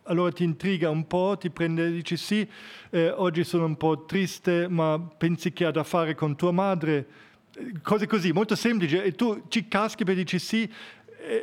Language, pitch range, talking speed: Italian, 150-180 Hz, 200 wpm